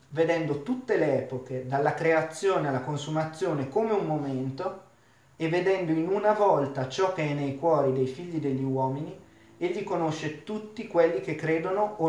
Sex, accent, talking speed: male, native, 160 wpm